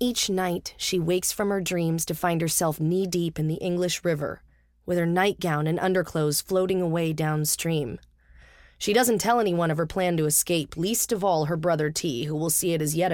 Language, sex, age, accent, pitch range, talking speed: English, female, 20-39, American, 155-190 Hz, 200 wpm